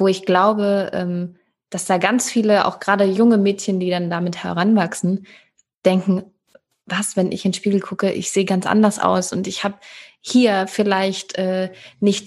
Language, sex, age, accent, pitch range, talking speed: German, female, 20-39, German, 175-205 Hz, 165 wpm